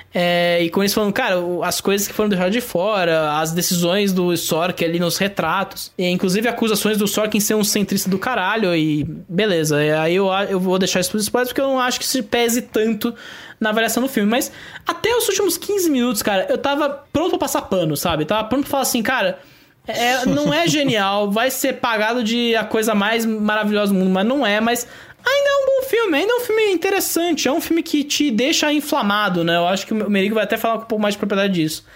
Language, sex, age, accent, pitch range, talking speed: English, male, 20-39, Brazilian, 195-275 Hz, 235 wpm